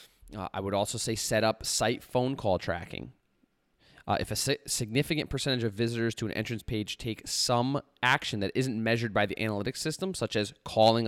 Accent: American